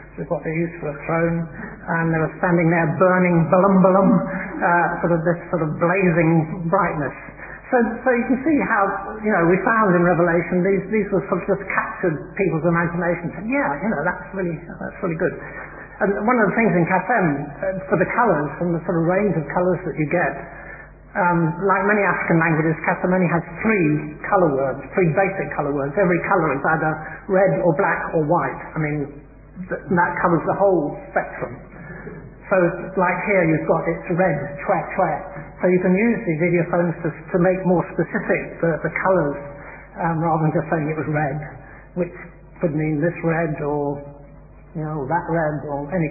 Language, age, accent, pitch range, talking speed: English, 60-79, British, 160-190 Hz, 195 wpm